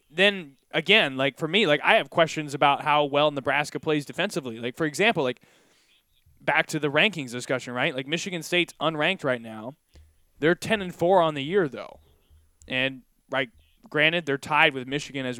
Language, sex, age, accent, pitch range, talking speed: English, male, 20-39, American, 130-160 Hz, 185 wpm